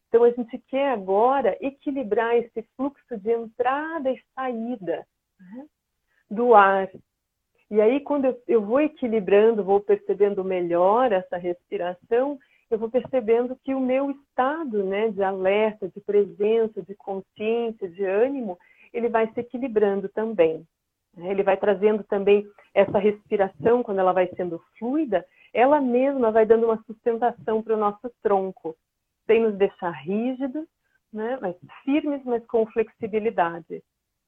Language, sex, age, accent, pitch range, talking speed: Portuguese, female, 40-59, Brazilian, 190-250 Hz, 140 wpm